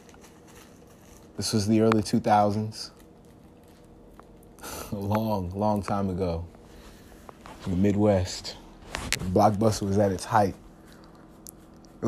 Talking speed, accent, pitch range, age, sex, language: 100 wpm, American, 85-110 Hz, 20-39, male, English